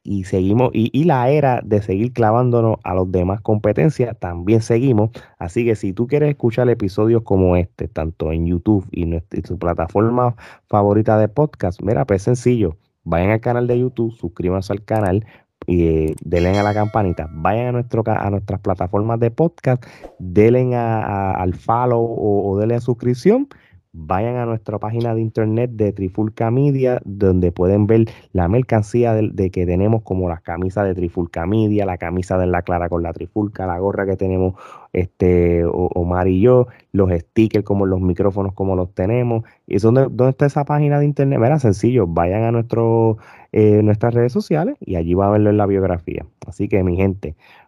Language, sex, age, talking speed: Spanish, male, 30-49, 180 wpm